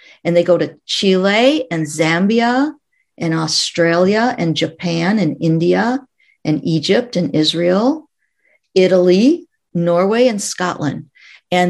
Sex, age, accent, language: female, 50-69, American, English